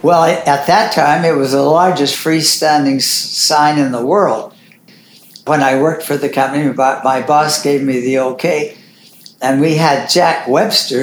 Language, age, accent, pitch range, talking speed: English, 60-79, American, 145-175 Hz, 165 wpm